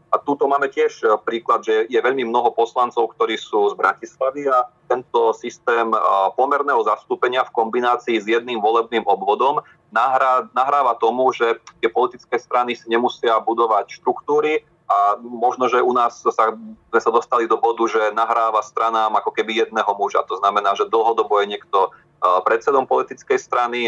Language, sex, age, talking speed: Slovak, male, 30-49, 155 wpm